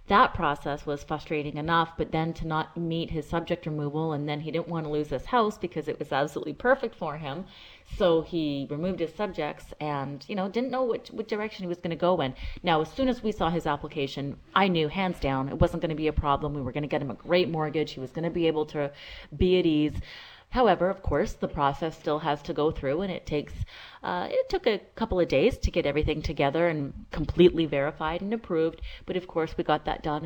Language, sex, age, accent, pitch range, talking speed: English, female, 30-49, American, 150-180 Hz, 240 wpm